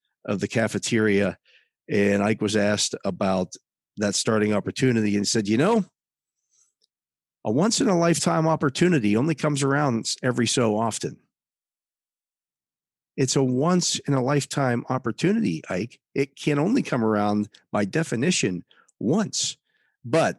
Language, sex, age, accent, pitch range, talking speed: English, male, 40-59, American, 100-125 Hz, 130 wpm